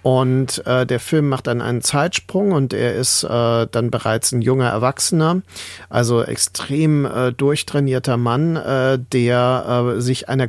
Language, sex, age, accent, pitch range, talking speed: German, male, 40-59, German, 120-140 Hz, 155 wpm